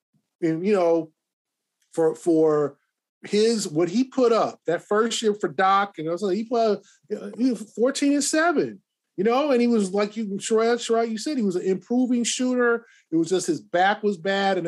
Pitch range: 160-195 Hz